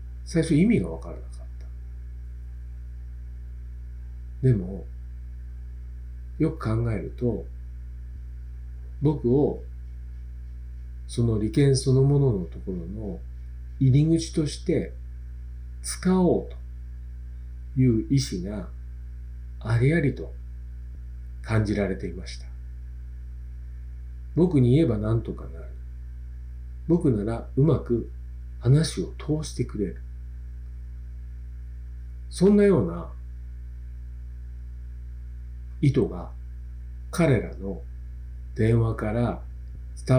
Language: Japanese